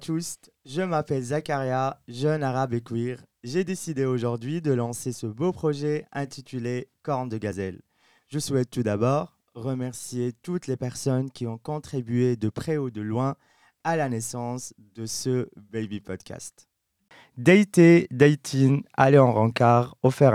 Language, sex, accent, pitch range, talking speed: English, male, French, 120-155 Hz, 150 wpm